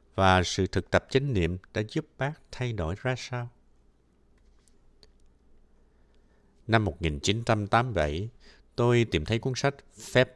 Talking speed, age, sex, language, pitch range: 120 wpm, 60-79, male, Vietnamese, 80-120 Hz